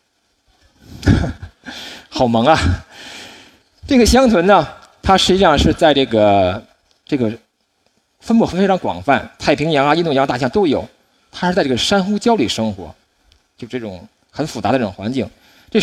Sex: male